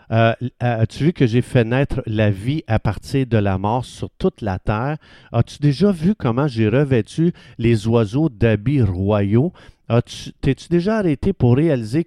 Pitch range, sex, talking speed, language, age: 110-150 Hz, male, 175 wpm, French, 50-69